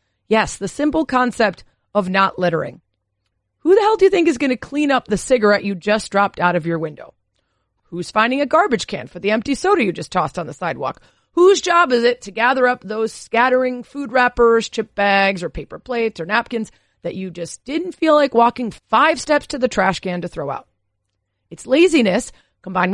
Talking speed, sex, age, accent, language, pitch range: 205 wpm, female, 30-49, American, English, 185-280 Hz